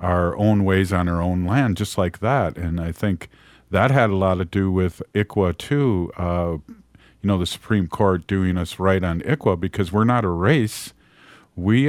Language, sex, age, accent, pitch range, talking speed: English, male, 50-69, American, 90-105 Hz, 195 wpm